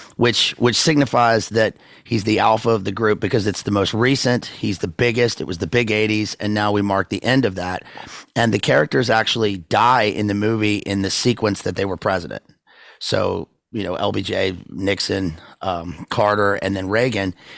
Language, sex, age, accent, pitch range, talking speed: English, male, 30-49, American, 100-120 Hz, 190 wpm